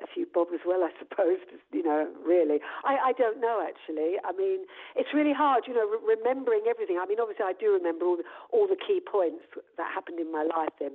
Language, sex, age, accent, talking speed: English, female, 50-69, British, 235 wpm